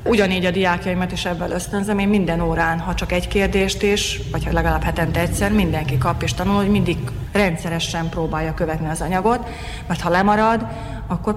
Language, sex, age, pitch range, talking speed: Hungarian, female, 30-49, 165-205 Hz, 175 wpm